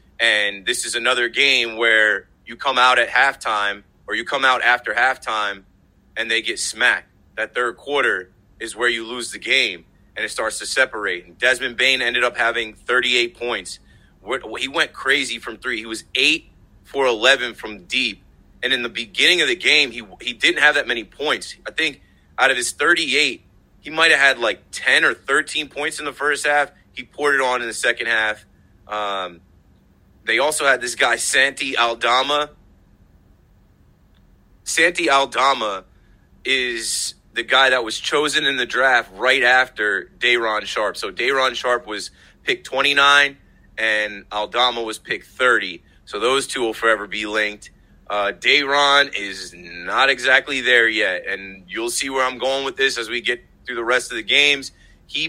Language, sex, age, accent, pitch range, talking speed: English, male, 30-49, American, 100-130 Hz, 175 wpm